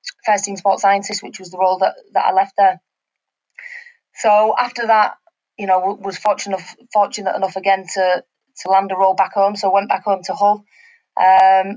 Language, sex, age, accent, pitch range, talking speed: English, female, 20-39, British, 190-210 Hz, 200 wpm